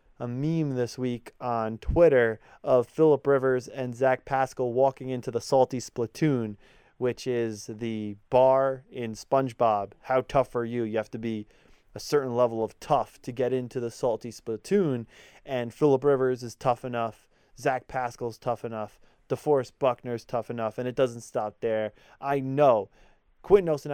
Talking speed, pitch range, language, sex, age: 165 wpm, 120-140 Hz, English, male, 20-39